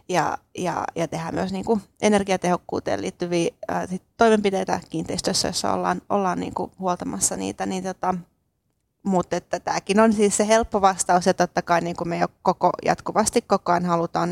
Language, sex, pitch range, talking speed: Finnish, female, 170-185 Hz, 170 wpm